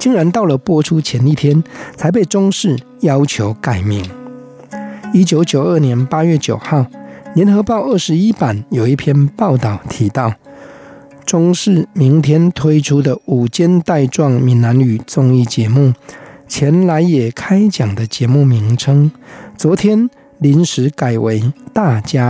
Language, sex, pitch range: Chinese, male, 125-165 Hz